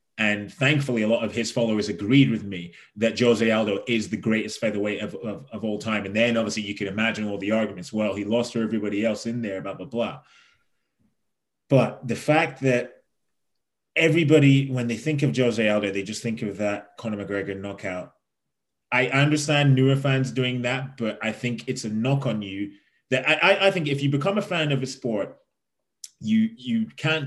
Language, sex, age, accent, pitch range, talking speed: English, male, 20-39, British, 105-130 Hz, 200 wpm